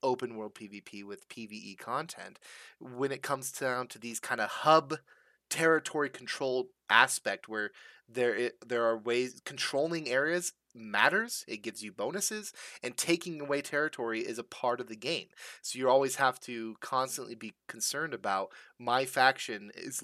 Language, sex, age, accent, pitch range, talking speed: English, male, 20-39, American, 120-165 Hz, 155 wpm